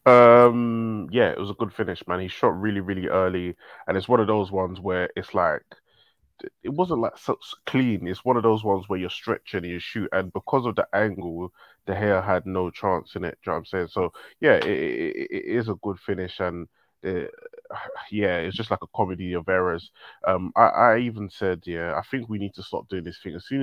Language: English